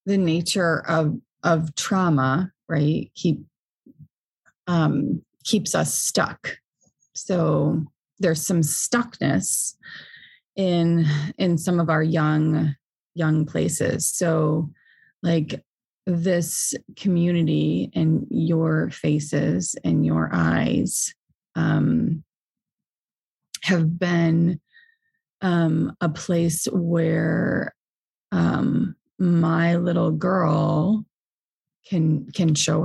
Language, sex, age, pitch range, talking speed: English, female, 30-49, 155-180 Hz, 85 wpm